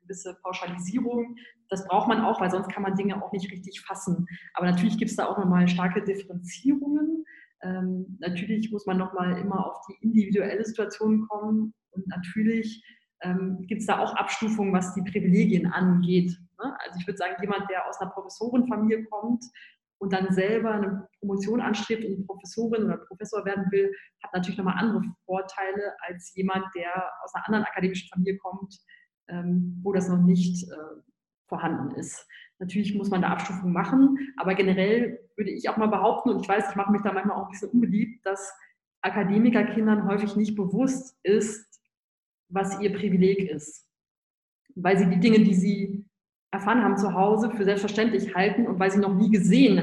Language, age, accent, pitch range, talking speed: German, 20-39, German, 185-215 Hz, 175 wpm